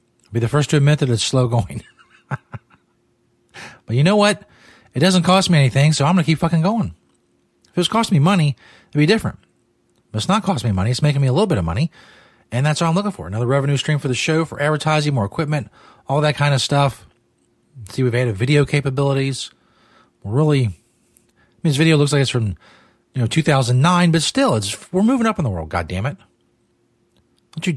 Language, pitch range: English, 115-150 Hz